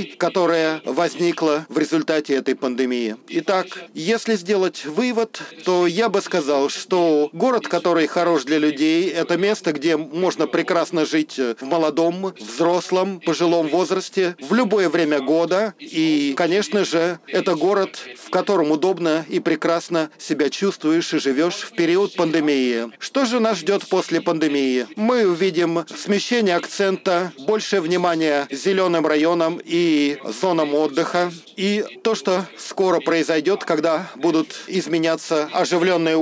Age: 40-59